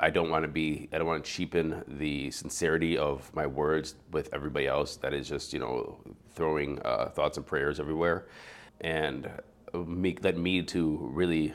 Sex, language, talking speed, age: male, English, 175 wpm, 30-49